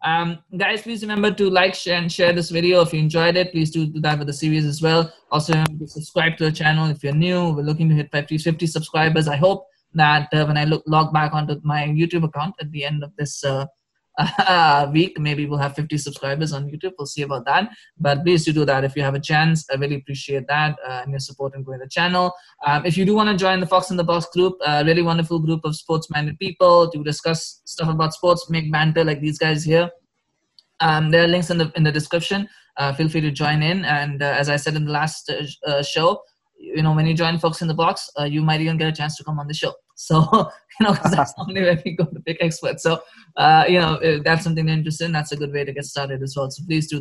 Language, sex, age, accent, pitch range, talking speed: English, male, 20-39, Indian, 145-175 Hz, 265 wpm